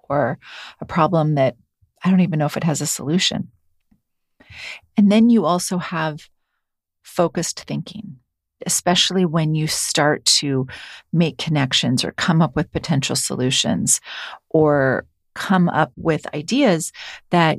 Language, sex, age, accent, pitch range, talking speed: English, female, 40-59, American, 150-185 Hz, 135 wpm